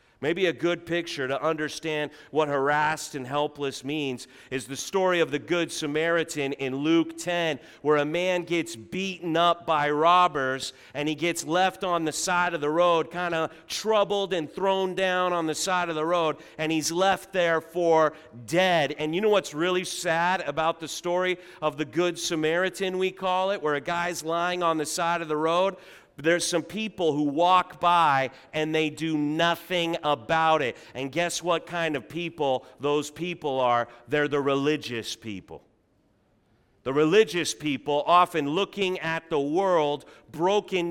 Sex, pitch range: male, 150-180 Hz